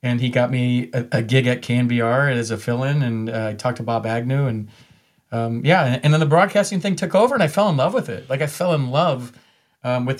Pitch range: 110-135 Hz